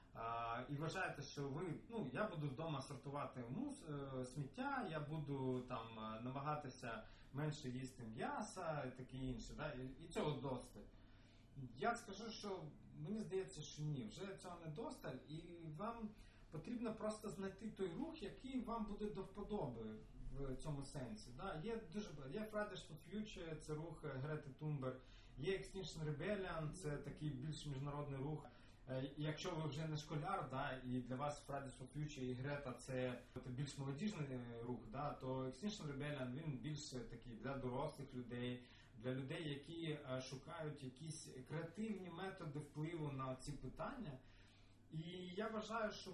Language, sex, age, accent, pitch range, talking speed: Ukrainian, male, 30-49, native, 130-185 Hz, 150 wpm